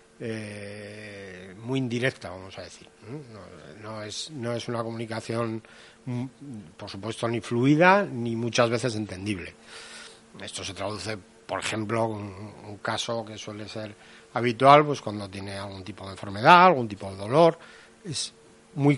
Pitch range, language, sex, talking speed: 105-125 Hz, Spanish, male, 145 wpm